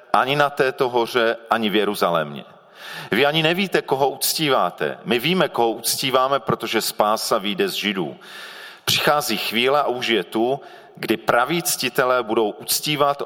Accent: native